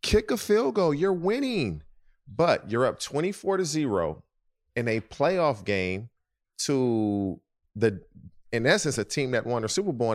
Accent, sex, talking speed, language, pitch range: American, male, 165 wpm, English, 95-120 Hz